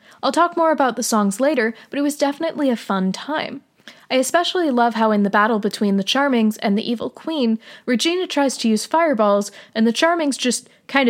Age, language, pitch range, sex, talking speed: 20-39, English, 215-280 Hz, female, 205 wpm